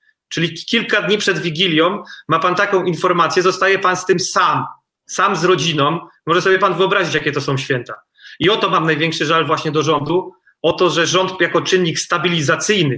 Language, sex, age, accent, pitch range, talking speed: Polish, male, 30-49, native, 155-185 Hz, 190 wpm